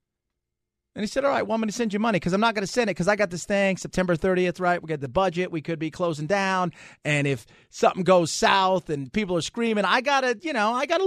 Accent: American